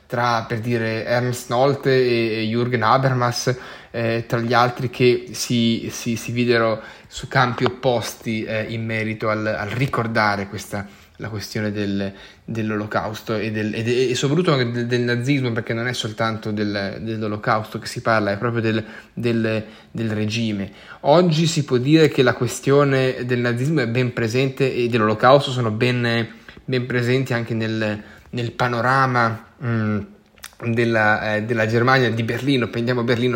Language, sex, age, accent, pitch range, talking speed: Italian, male, 10-29, native, 110-125 Hz, 155 wpm